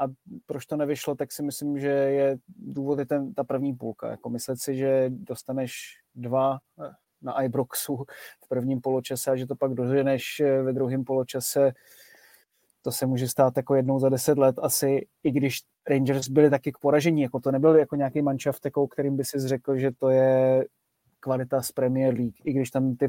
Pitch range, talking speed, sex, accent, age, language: 130-145 Hz, 185 wpm, male, native, 20-39, Czech